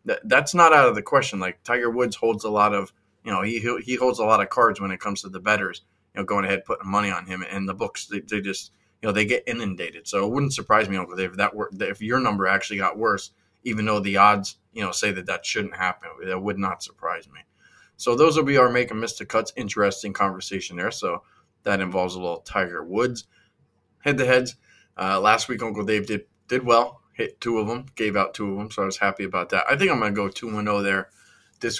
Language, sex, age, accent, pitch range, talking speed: English, male, 20-39, American, 100-115 Hz, 255 wpm